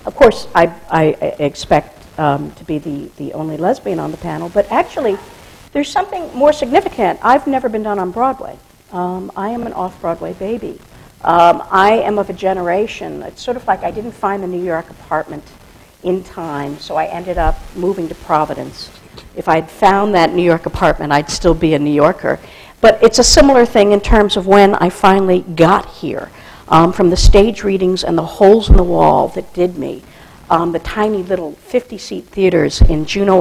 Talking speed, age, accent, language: 190 wpm, 60-79, American, English